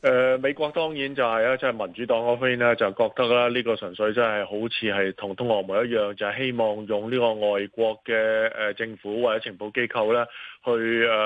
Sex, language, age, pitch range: male, Chinese, 20-39, 105-125 Hz